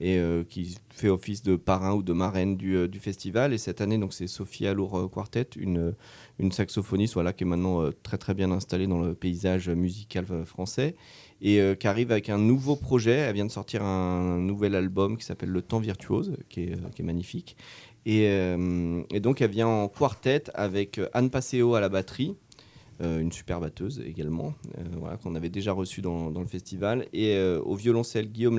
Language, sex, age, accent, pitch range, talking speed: French, male, 30-49, French, 90-115 Hz, 210 wpm